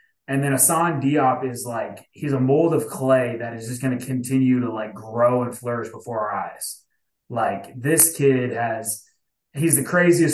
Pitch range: 120-140 Hz